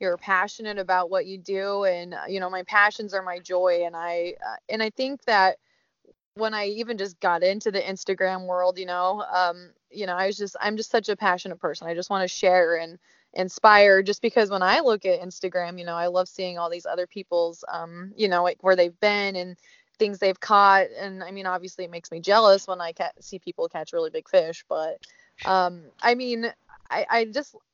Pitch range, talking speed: 180-210 Hz, 225 wpm